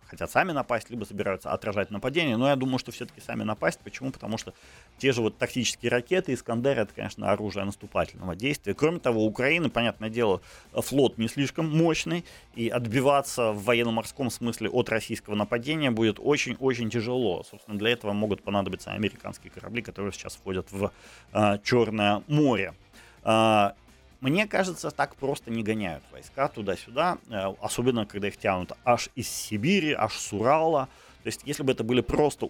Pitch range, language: 105-135 Hz, Ukrainian